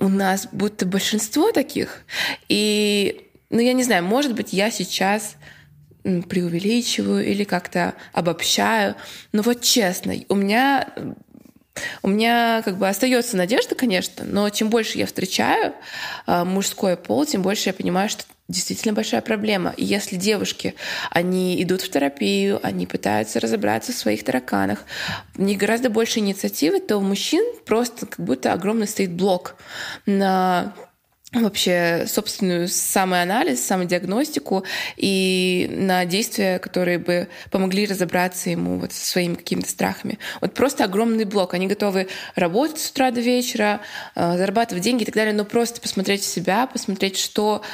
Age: 20-39